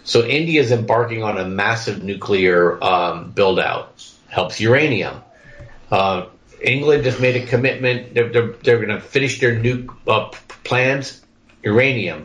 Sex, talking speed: male, 140 wpm